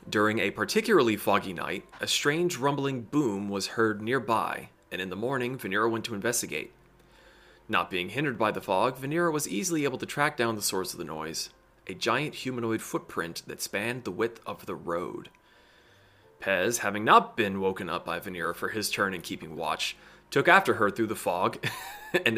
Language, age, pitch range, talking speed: English, 30-49, 110-140 Hz, 190 wpm